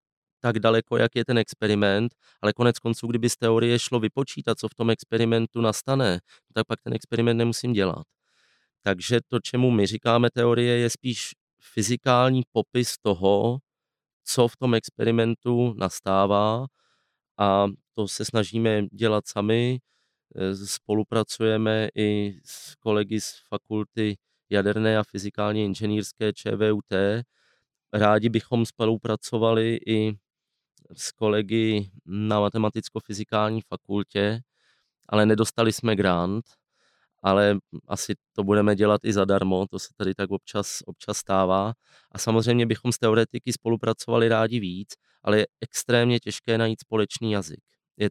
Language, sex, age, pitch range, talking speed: Czech, male, 20-39, 105-120 Hz, 125 wpm